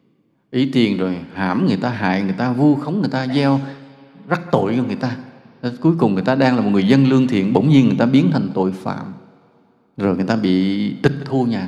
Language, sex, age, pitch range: Vietnamese, male, 20-39, 110-145 Hz